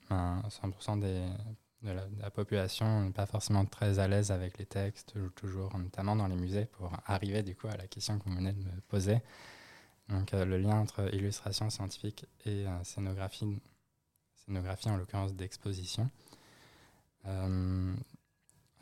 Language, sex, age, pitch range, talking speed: French, male, 20-39, 95-115 Hz, 155 wpm